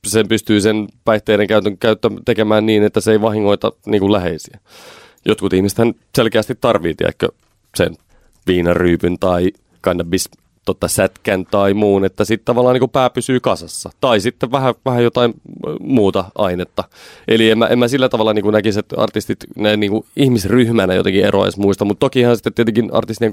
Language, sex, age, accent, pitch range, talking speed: Finnish, male, 30-49, native, 95-115 Hz, 160 wpm